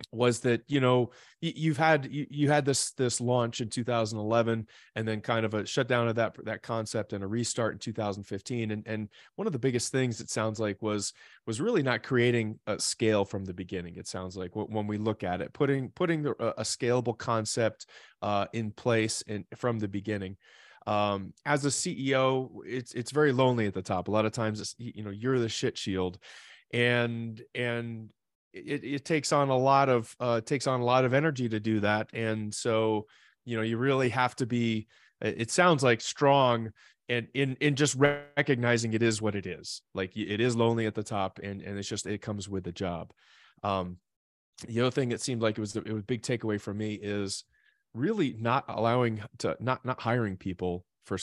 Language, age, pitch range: English, 30-49, 105-125 Hz